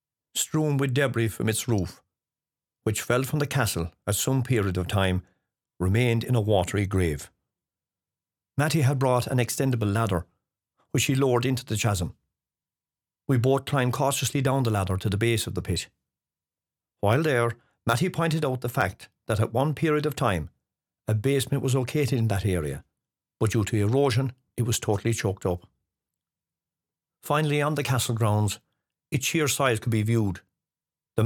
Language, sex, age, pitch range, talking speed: English, male, 50-69, 105-135 Hz, 165 wpm